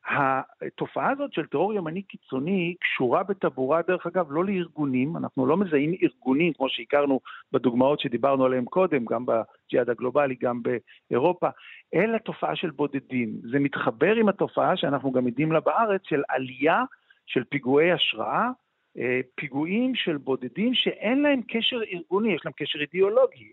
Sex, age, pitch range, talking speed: male, 50-69, 140-205 Hz, 145 wpm